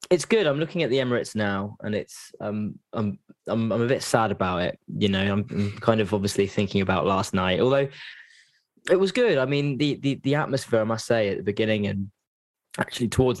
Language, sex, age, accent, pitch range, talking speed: English, male, 10-29, British, 100-130 Hz, 220 wpm